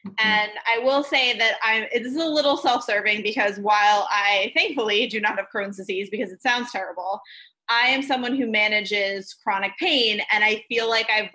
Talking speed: 190 wpm